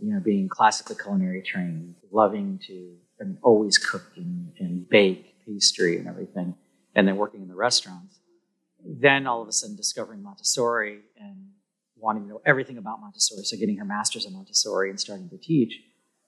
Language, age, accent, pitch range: English, 40-59, American, 110-180 Hz